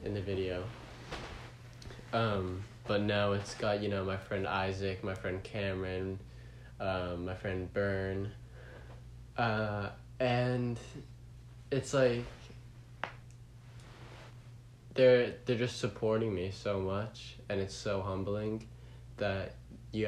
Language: English